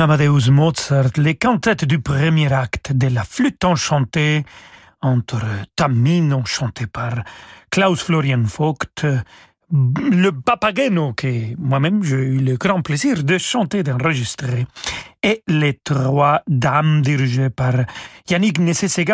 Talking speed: 120 wpm